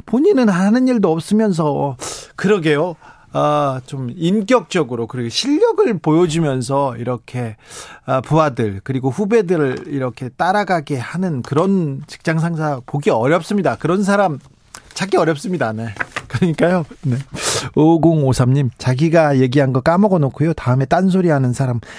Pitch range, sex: 130-180 Hz, male